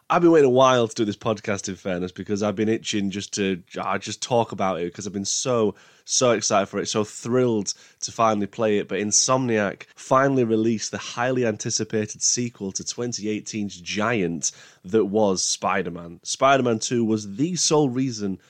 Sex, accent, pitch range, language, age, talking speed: male, British, 95-120 Hz, English, 20-39, 190 wpm